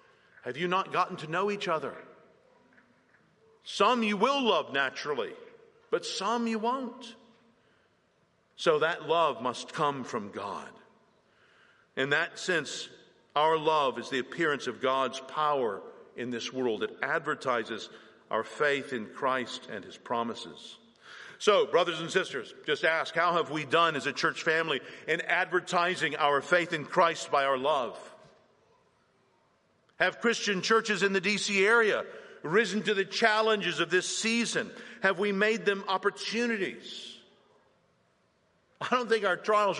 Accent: American